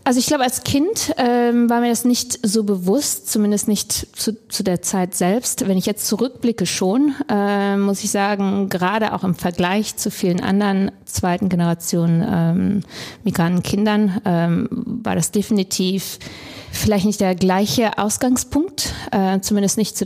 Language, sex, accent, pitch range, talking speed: German, female, German, 170-205 Hz, 160 wpm